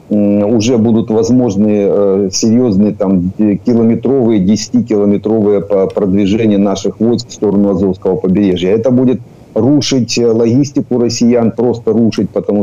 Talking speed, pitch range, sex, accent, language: 110 wpm, 100-115 Hz, male, native, Ukrainian